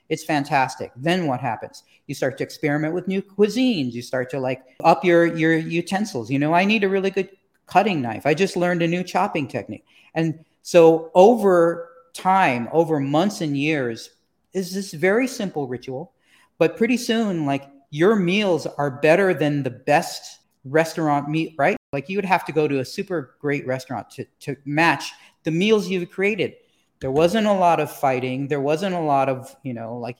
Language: English